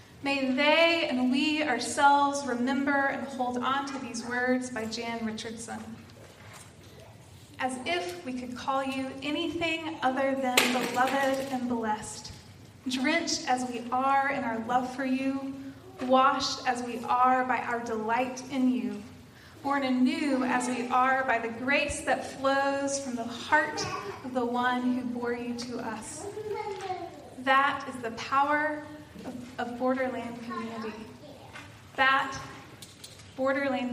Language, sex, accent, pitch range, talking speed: English, female, American, 230-275 Hz, 135 wpm